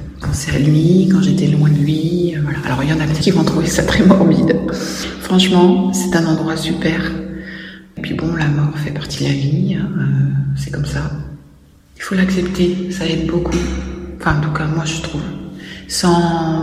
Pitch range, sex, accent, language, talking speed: 140-170 Hz, female, French, French, 195 wpm